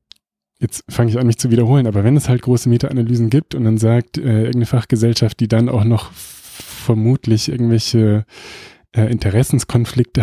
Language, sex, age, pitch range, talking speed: German, male, 20-39, 105-120 Hz, 170 wpm